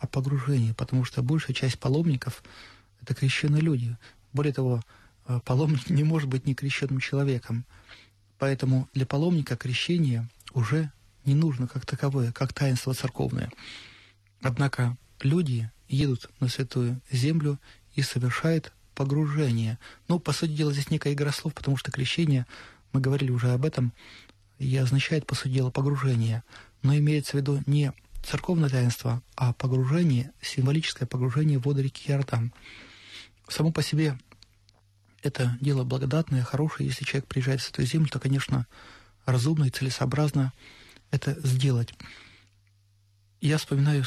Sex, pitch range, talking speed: male, 120-140 Hz, 135 wpm